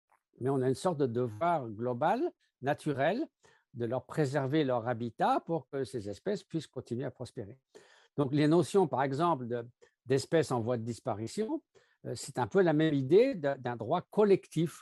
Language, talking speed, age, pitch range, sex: French, 170 wpm, 60-79, 125-170 Hz, male